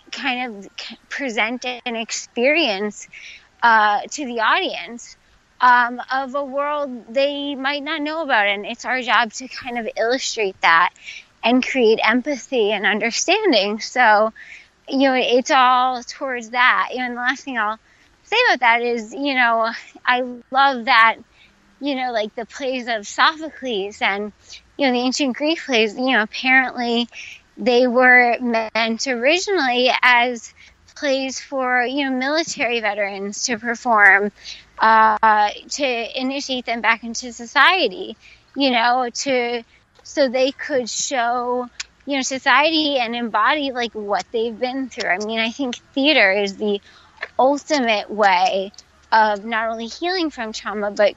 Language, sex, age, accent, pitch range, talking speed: English, female, 20-39, American, 225-270 Hz, 145 wpm